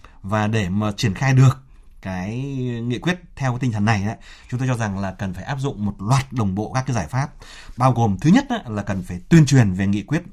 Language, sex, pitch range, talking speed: Vietnamese, male, 105-140 Hz, 250 wpm